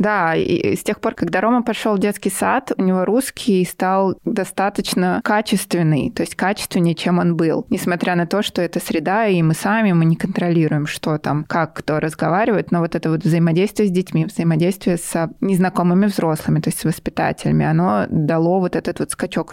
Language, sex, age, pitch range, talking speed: Russian, female, 20-39, 170-220 Hz, 185 wpm